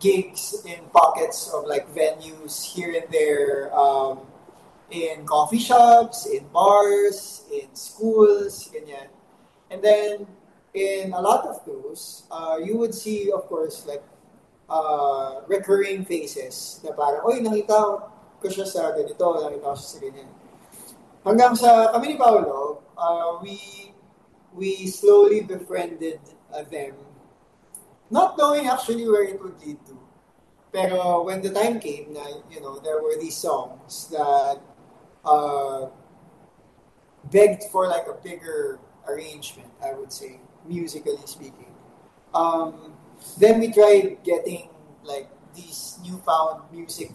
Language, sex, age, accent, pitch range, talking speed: Filipino, male, 20-39, native, 160-220 Hz, 125 wpm